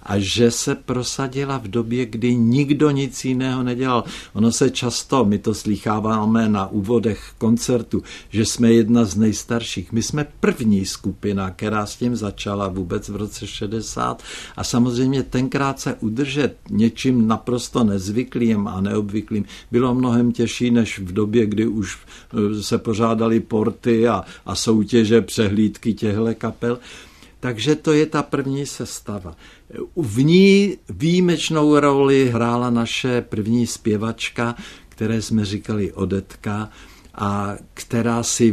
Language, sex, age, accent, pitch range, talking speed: Czech, male, 60-79, native, 105-120 Hz, 130 wpm